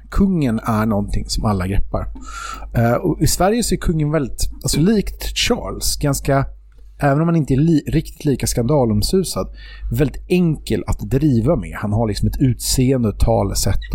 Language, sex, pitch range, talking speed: English, male, 105-145 Hz, 160 wpm